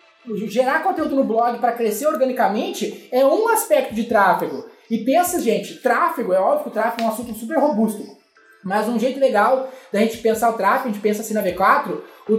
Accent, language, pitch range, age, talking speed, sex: Brazilian, Portuguese, 225-275 Hz, 20-39, 205 wpm, male